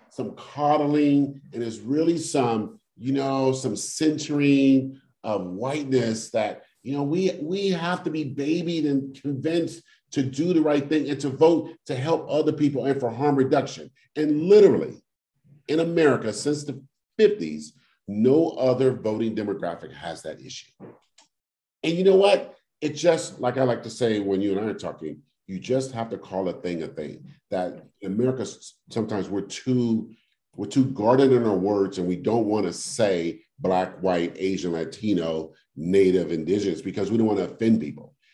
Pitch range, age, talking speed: 100-145 Hz, 40-59, 170 wpm